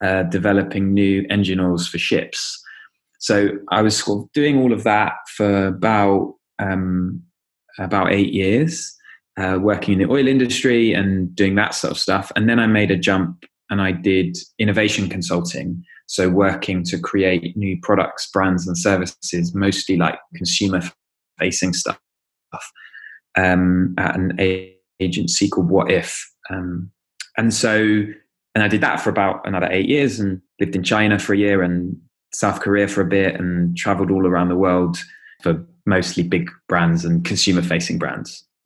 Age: 20-39